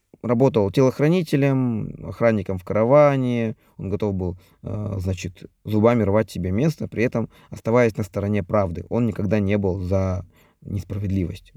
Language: Russian